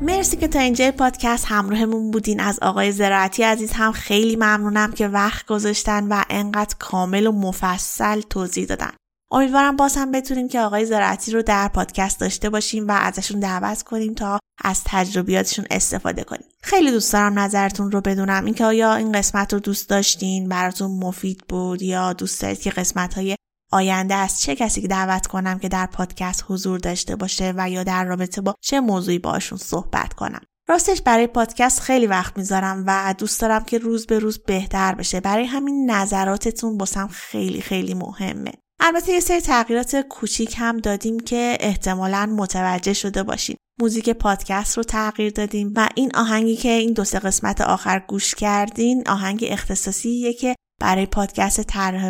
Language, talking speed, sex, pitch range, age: Persian, 165 wpm, female, 190-225 Hz, 20-39